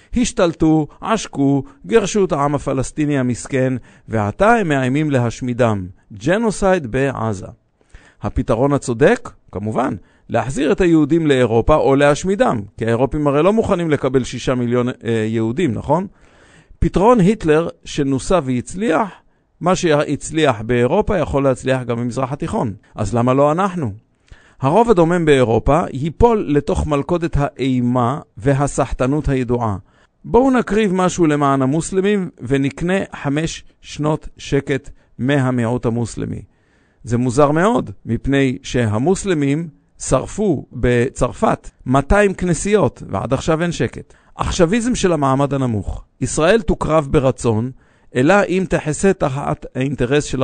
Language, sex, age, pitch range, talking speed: English, male, 50-69, 120-165 Hz, 110 wpm